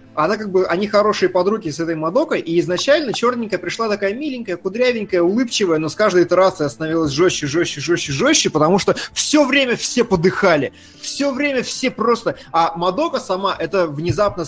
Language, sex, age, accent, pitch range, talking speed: Russian, male, 20-39, native, 175-230 Hz, 170 wpm